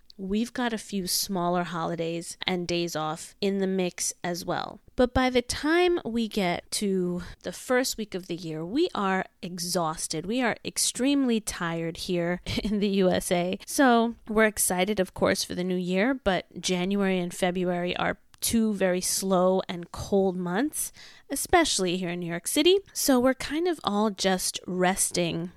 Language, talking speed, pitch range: English, 165 wpm, 180-225 Hz